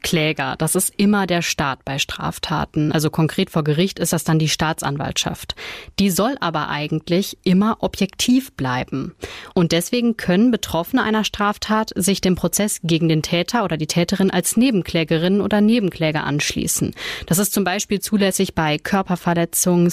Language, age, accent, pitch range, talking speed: German, 30-49, German, 165-205 Hz, 155 wpm